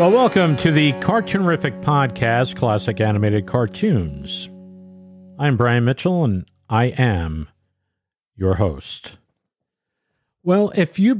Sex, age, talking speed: male, 50-69, 105 wpm